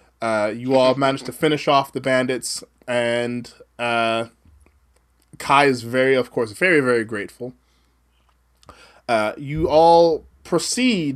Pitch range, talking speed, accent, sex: 120-140 Hz, 125 wpm, American, male